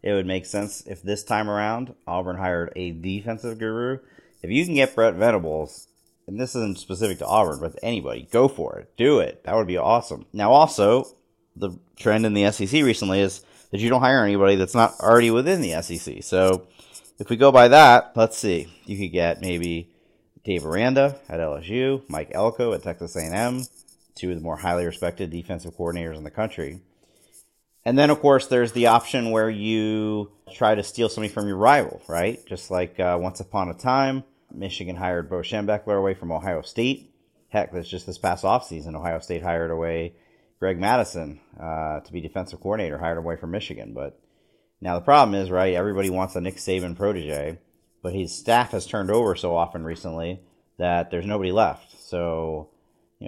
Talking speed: 190 wpm